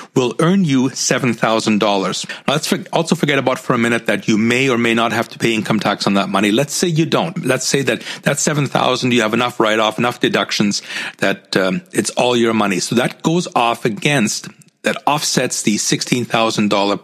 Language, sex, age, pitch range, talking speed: English, male, 40-59, 110-155 Hz, 195 wpm